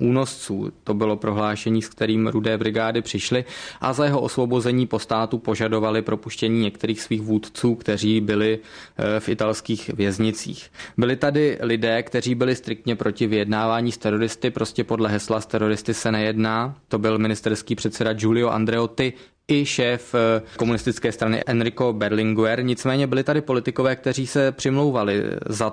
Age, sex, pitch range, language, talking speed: 20-39, male, 110-120 Hz, Czech, 140 wpm